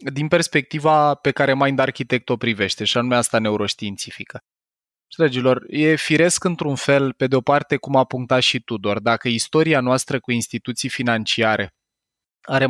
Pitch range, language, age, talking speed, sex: 115-140 Hz, Romanian, 20-39, 150 wpm, male